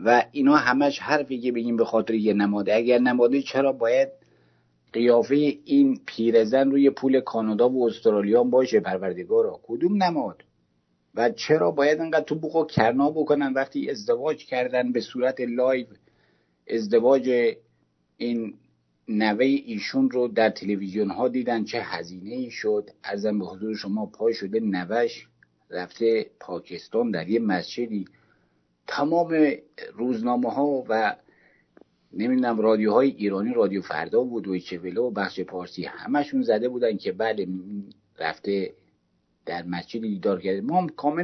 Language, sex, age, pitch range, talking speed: English, male, 50-69, 100-140 Hz, 135 wpm